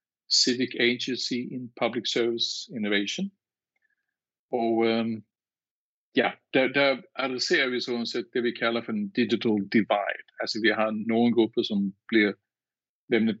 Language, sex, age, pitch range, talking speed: Danish, male, 50-69, 110-125 Hz, 140 wpm